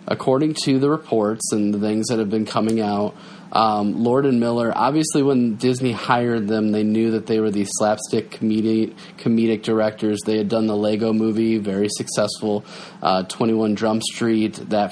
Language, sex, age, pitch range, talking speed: English, male, 20-39, 105-125 Hz, 175 wpm